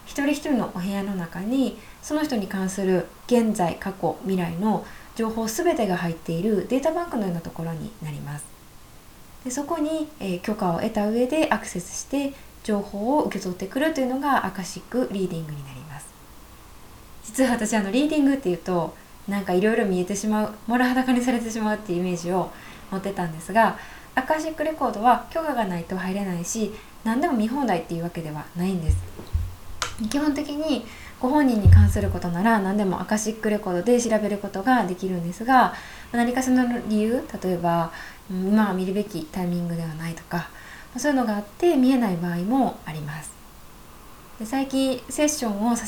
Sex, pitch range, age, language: female, 180-250 Hz, 20-39, Japanese